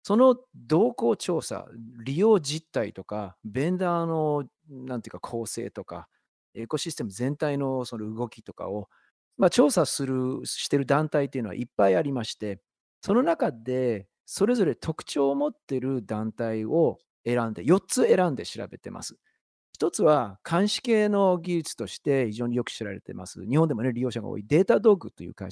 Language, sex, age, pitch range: Japanese, male, 40-59, 115-170 Hz